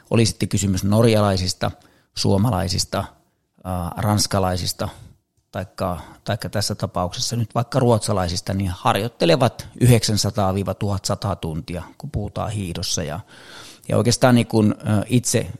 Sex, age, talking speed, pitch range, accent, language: male, 30-49, 100 wpm, 100-115 Hz, native, Finnish